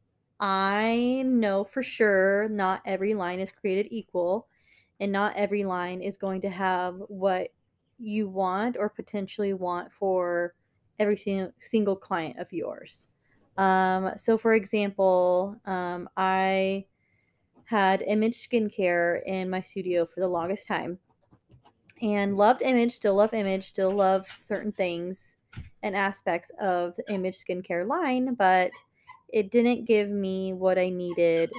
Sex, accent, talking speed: female, American, 135 wpm